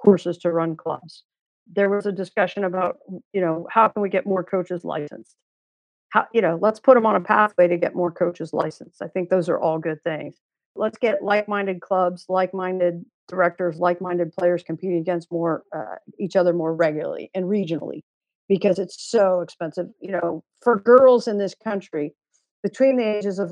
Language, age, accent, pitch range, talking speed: English, 50-69, American, 175-210 Hz, 180 wpm